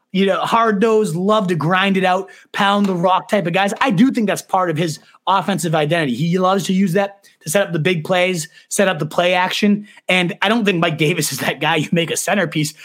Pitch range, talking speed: 160-205 Hz, 245 wpm